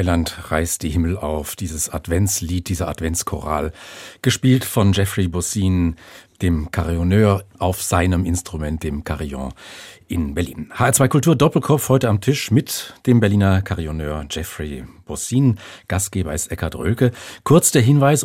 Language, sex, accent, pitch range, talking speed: German, male, German, 90-125 Hz, 130 wpm